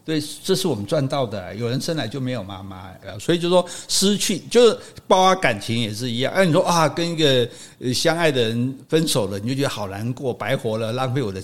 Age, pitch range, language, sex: 60-79, 115-170 Hz, Chinese, male